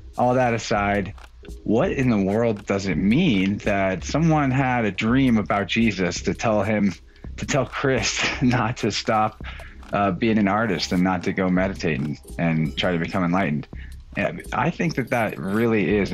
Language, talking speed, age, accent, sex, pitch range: English, 180 wpm, 30-49, American, male, 85-105 Hz